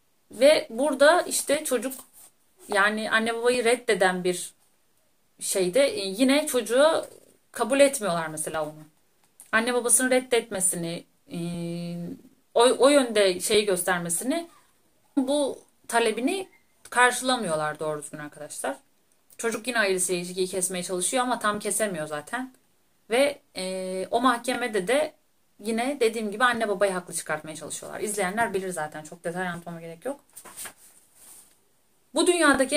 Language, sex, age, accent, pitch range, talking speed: Turkish, female, 40-59, native, 185-255 Hz, 115 wpm